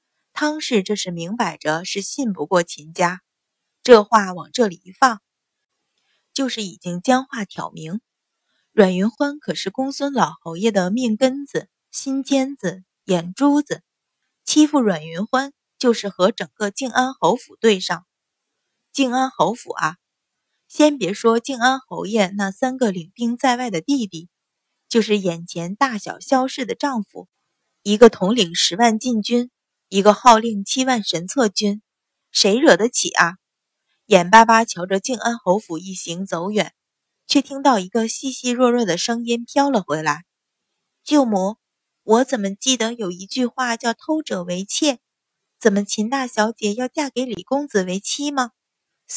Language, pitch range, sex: Chinese, 190-255 Hz, female